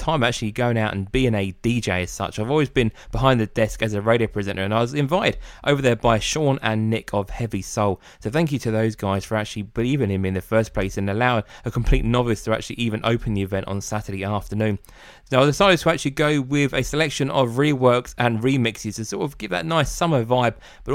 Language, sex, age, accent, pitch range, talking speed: English, male, 20-39, British, 105-135 Hz, 240 wpm